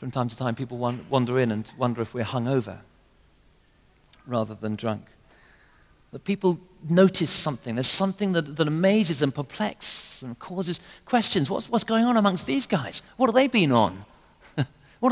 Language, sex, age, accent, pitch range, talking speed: English, male, 50-69, British, 120-185 Hz, 165 wpm